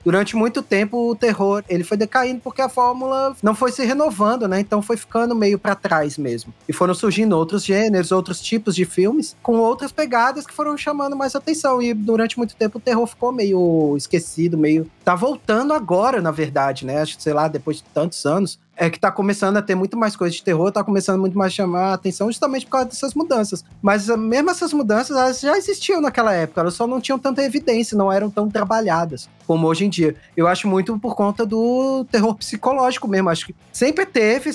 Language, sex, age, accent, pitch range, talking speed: Portuguese, male, 20-39, Brazilian, 180-240 Hz, 210 wpm